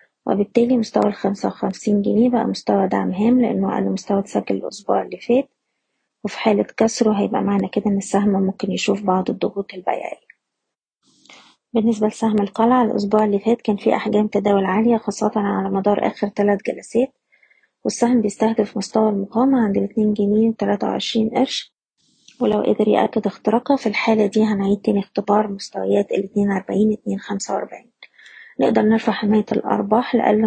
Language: Arabic